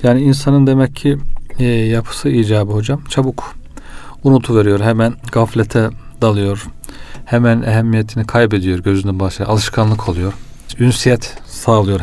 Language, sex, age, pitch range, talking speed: Turkish, male, 40-59, 105-125 Hz, 110 wpm